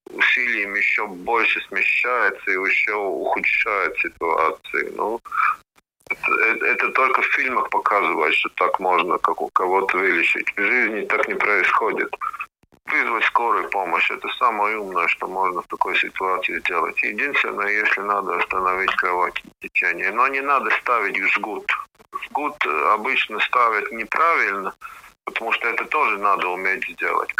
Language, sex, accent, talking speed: Russian, male, native, 140 wpm